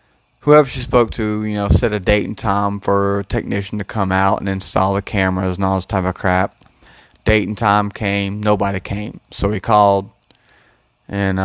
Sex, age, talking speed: male, 30-49, 195 wpm